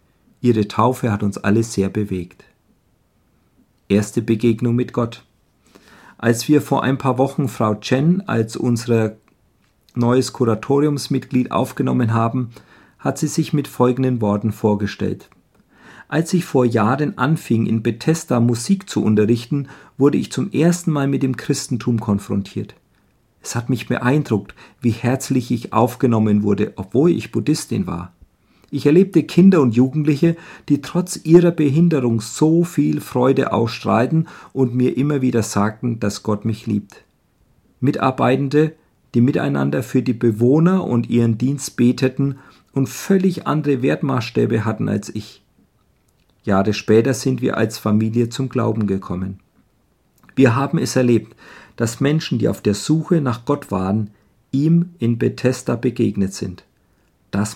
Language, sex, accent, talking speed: German, male, German, 135 wpm